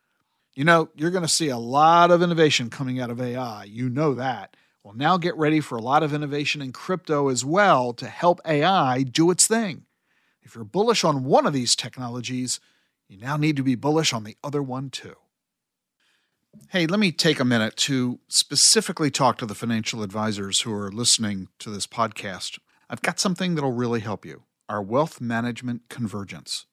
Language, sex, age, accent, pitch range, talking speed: English, male, 50-69, American, 115-150 Hz, 195 wpm